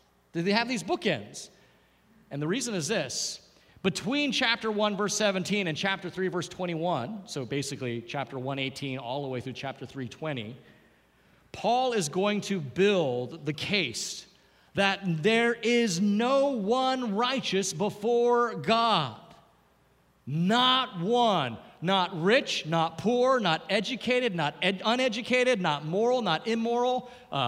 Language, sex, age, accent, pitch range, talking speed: English, male, 40-59, American, 165-230 Hz, 130 wpm